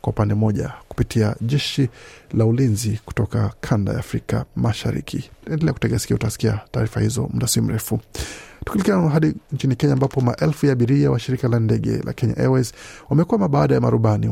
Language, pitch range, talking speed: Swahili, 115-140 Hz, 140 wpm